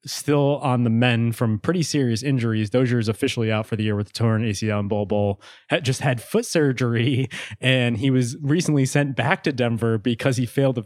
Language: English